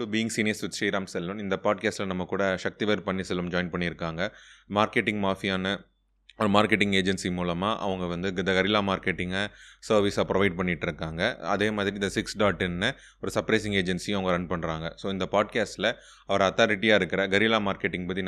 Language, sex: Tamil, male